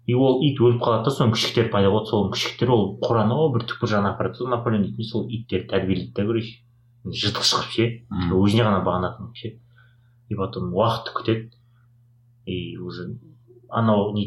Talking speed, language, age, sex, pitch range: 80 wpm, Russian, 30-49, male, 105-120 Hz